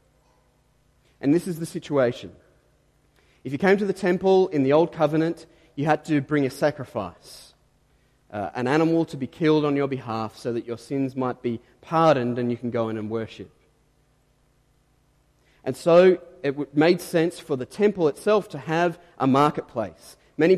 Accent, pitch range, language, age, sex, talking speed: Australian, 125-165 Hz, English, 30-49, male, 170 wpm